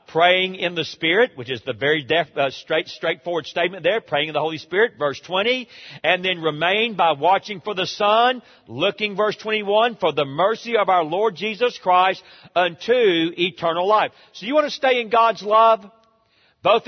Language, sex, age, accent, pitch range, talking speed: English, male, 40-59, American, 155-215 Hz, 185 wpm